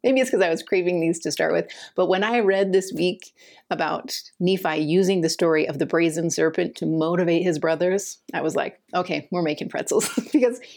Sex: female